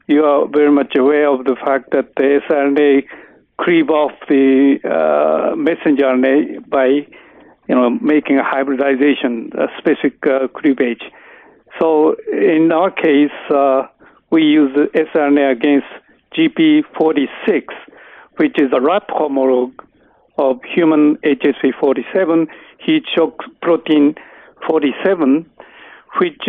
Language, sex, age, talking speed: English, male, 60-79, 115 wpm